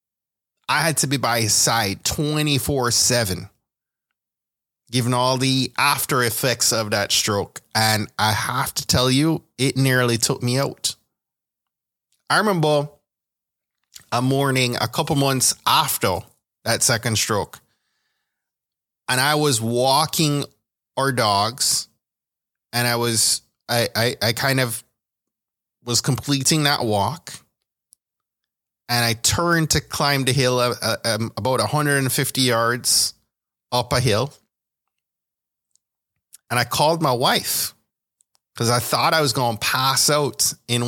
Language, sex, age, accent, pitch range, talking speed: English, male, 20-39, American, 115-140 Hz, 125 wpm